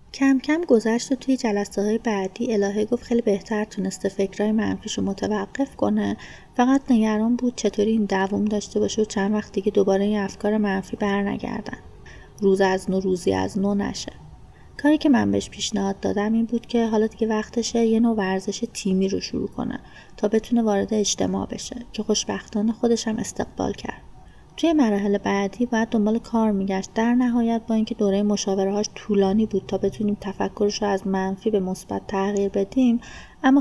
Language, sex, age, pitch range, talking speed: Persian, female, 30-49, 195-235 Hz, 170 wpm